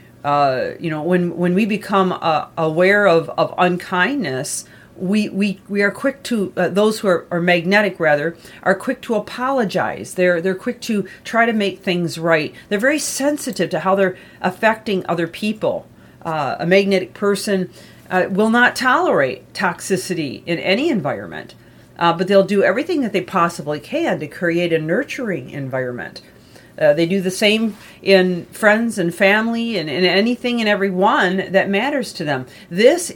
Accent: American